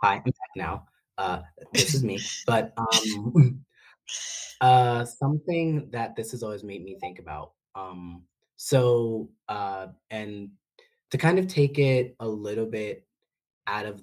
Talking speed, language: 145 wpm, English